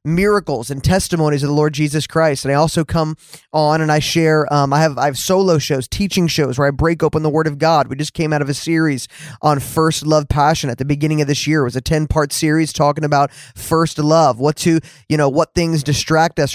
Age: 20-39